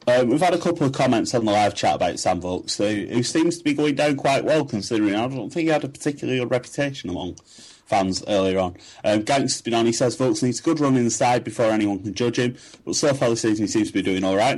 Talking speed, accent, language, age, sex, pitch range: 285 wpm, British, English, 30-49, male, 95-125 Hz